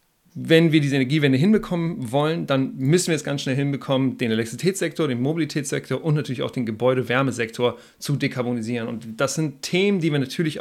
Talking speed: 175 wpm